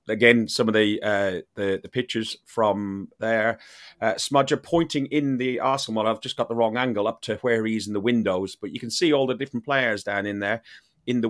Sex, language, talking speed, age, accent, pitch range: male, English, 235 wpm, 30-49, British, 100-120 Hz